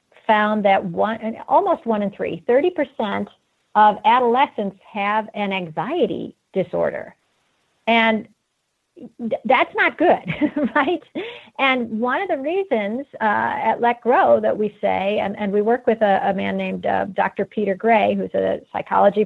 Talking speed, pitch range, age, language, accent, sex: 145 wpm, 200-265 Hz, 50-69, English, American, female